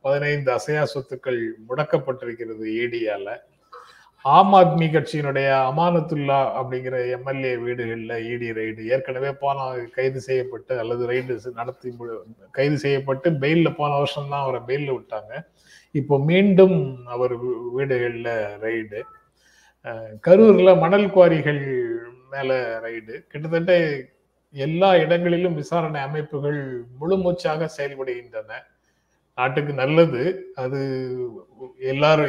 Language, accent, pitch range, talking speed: Tamil, native, 130-165 Hz, 95 wpm